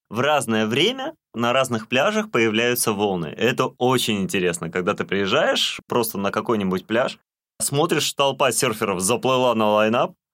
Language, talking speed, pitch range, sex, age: Russian, 140 wpm, 90-125 Hz, male, 20-39